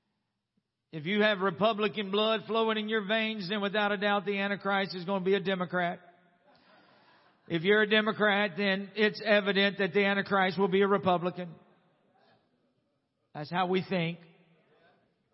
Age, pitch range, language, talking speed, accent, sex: 50-69, 180-220 Hz, English, 155 wpm, American, male